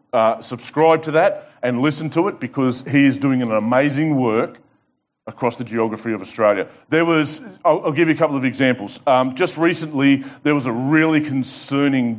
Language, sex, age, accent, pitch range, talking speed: English, male, 40-59, Australian, 125-155 Hz, 185 wpm